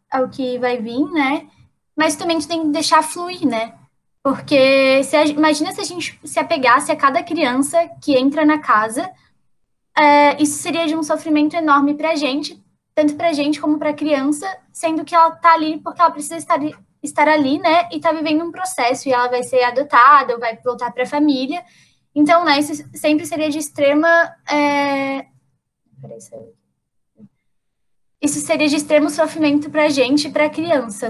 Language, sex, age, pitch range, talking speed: Portuguese, female, 10-29, 260-310 Hz, 175 wpm